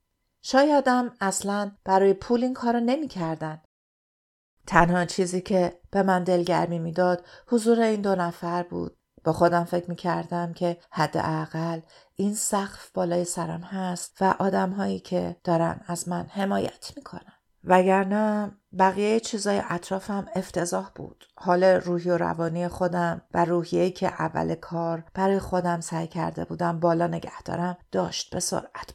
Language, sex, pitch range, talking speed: Persian, female, 165-190 Hz, 140 wpm